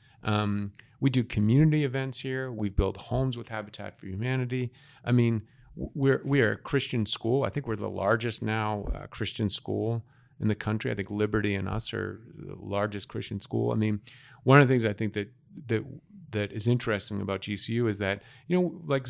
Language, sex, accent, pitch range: English, male, American, 105-140 Hz